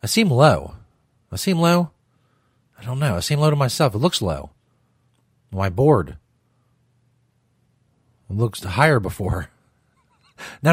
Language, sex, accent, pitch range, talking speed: English, male, American, 115-155 Hz, 130 wpm